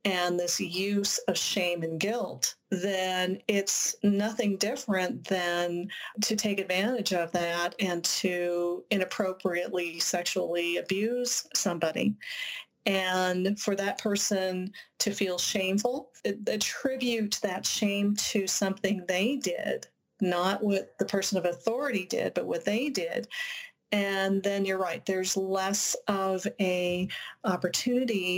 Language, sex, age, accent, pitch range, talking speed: English, female, 40-59, American, 180-210 Hz, 120 wpm